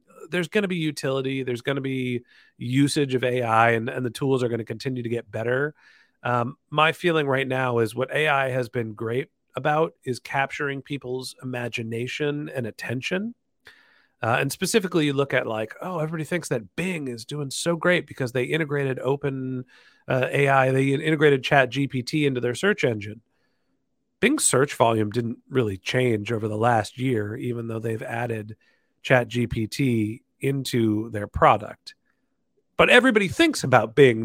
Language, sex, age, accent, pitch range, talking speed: English, male, 40-59, American, 120-165 Hz, 165 wpm